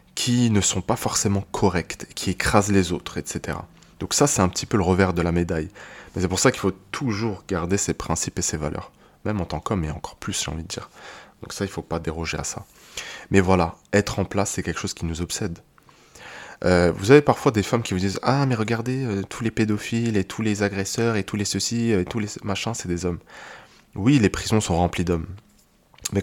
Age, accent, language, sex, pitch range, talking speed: 20-39, French, French, male, 85-105 Hz, 245 wpm